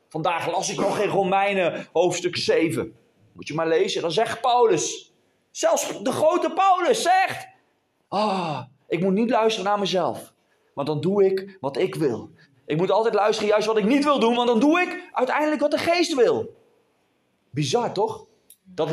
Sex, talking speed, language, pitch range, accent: male, 175 wpm, Dutch, 180-275 Hz, Dutch